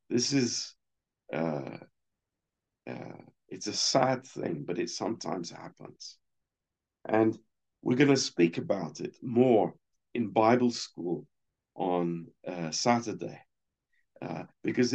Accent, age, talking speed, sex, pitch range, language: British, 50-69, 110 wpm, male, 90-115 Hz, Romanian